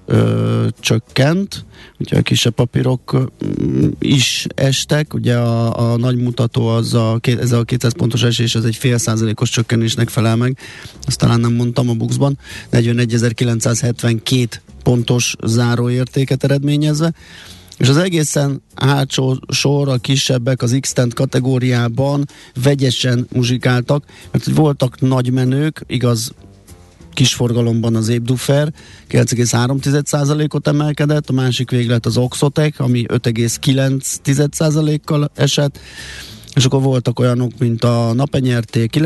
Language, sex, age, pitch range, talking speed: Hungarian, male, 30-49, 115-135 Hz, 125 wpm